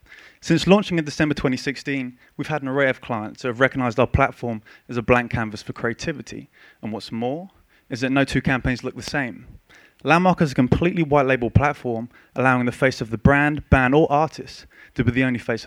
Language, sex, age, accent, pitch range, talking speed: English, male, 20-39, British, 120-145 Hz, 205 wpm